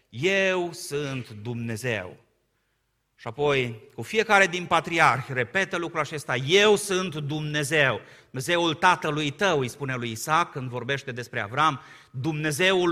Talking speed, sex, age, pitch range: 125 wpm, male, 30-49, 120-155 Hz